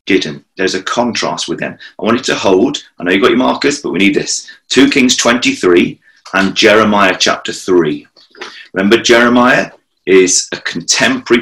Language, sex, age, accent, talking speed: English, male, 30-49, British, 170 wpm